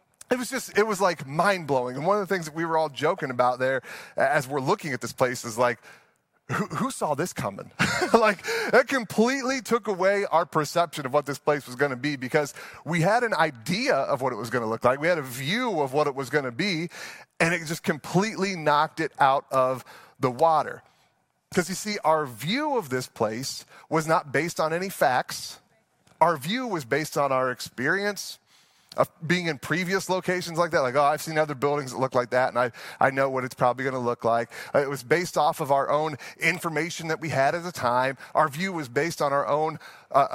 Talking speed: 225 wpm